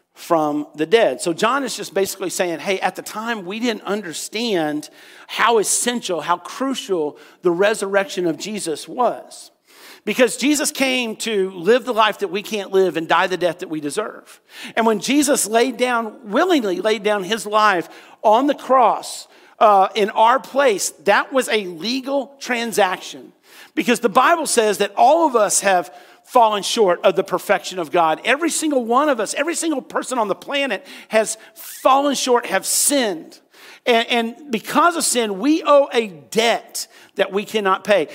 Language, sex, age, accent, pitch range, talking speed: English, male, 50-69, American, 195-270 Hz, 175 wpm